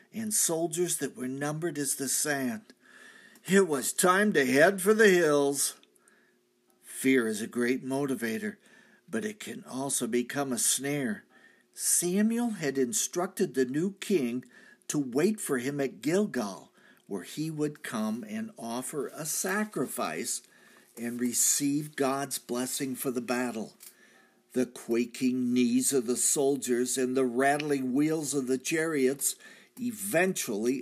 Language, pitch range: English, 130-190 Hz